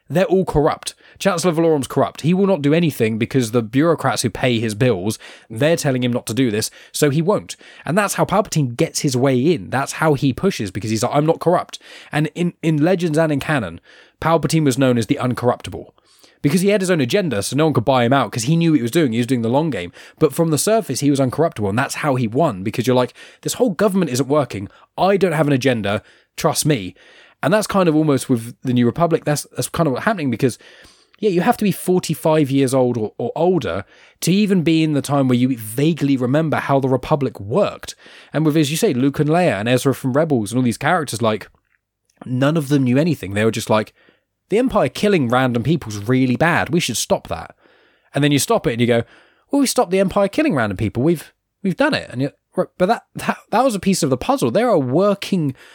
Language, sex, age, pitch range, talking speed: English, male, 10-29, 125-170 Hz, 245 wpm